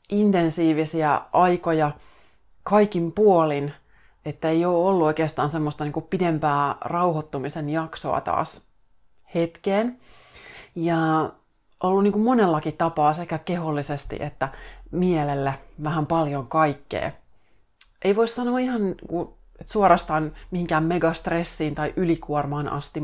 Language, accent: Finnish, native